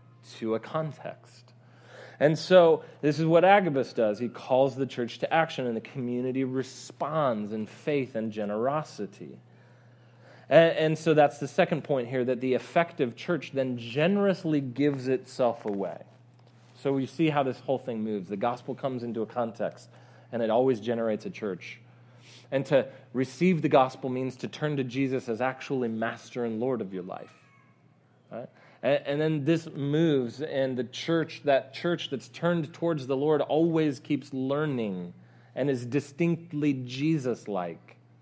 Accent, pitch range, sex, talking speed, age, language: American, 120-155 Hz, male, 160 wpm, 30-49, English